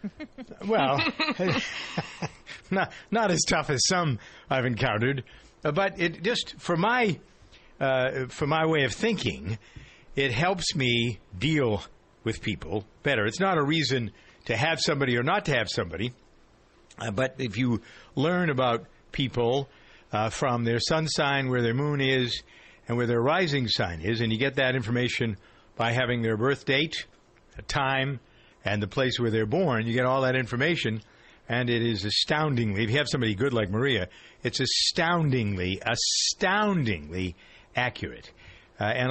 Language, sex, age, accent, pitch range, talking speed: English, male, 60-79, American, 110-150 Hz, 155 wpm